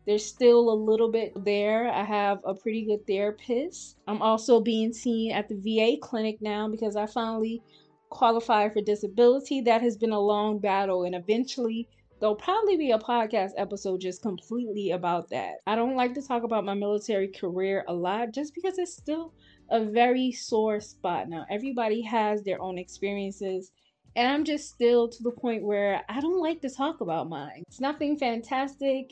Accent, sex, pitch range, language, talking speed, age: American, female, 200-240 Hz, English, 180 wpm, 20-39